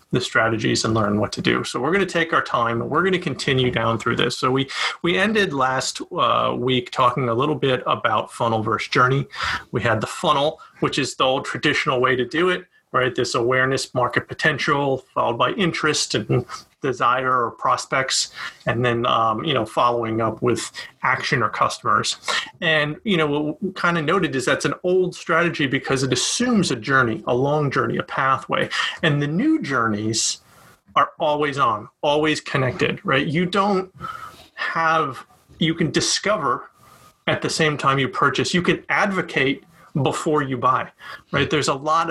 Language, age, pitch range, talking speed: English, 40-59, 130-170 Hz, 180 wpm